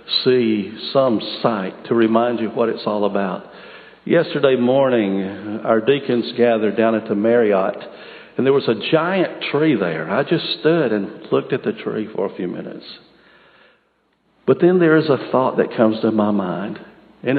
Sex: male